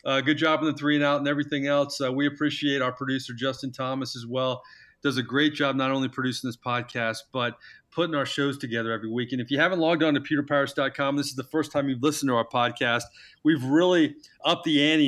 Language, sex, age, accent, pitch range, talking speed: English, male, 40-59, American, 130-155 Hz, 235 wpm